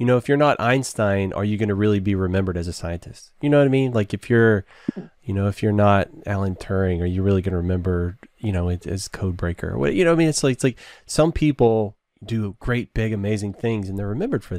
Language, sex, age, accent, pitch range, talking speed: English, male, 20-39, American, 100-125 Hz, 250 wpm